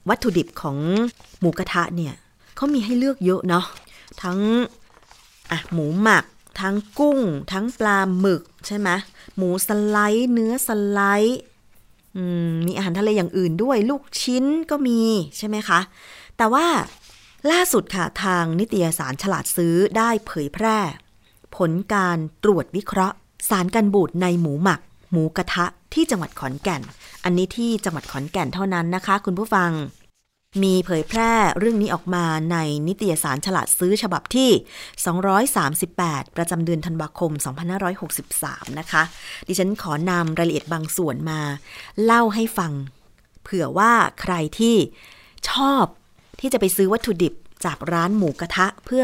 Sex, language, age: female, Thai, 30-49